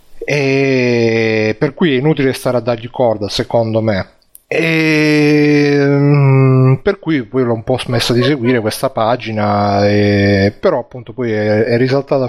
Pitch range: 115-140 Hz